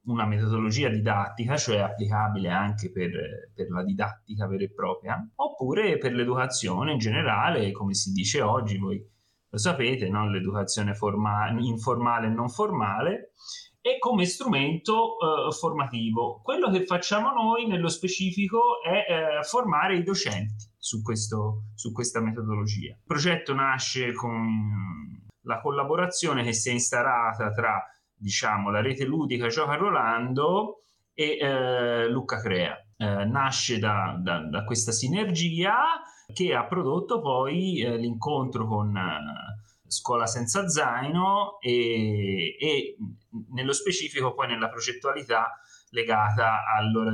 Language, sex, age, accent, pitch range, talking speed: Italian, male, 30-49, native, 105-155 Hz, 130 wpm